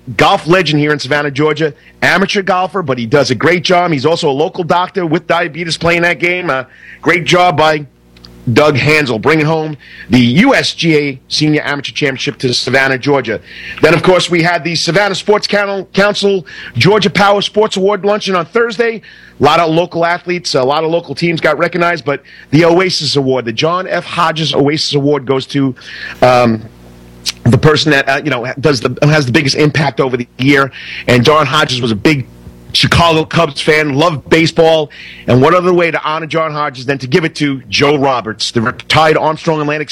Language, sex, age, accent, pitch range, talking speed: English, male, 40-59, American, 135-170 Hz, 190 wpm